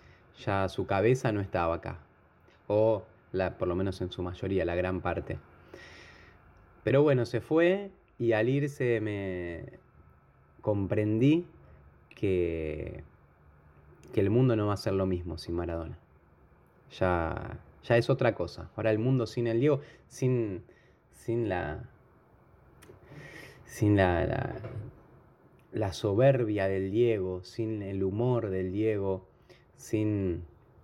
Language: Spanish